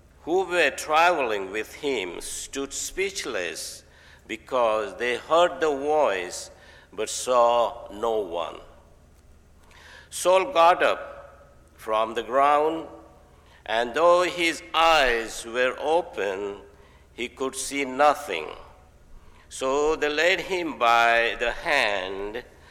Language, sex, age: English, male, 60-79